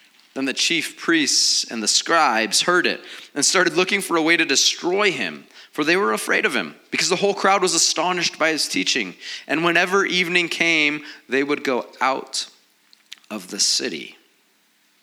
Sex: male